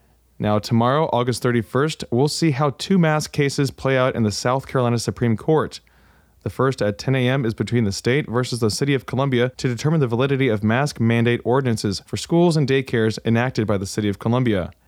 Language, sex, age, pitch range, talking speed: English, male, 20-39, 115-140 Hz, 200 wpm